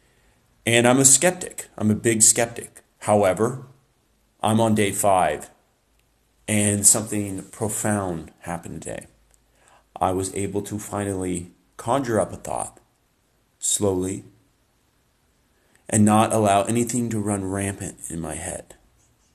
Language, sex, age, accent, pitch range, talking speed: English, male, 30-49, American, 95-115 Hz, 120 wpm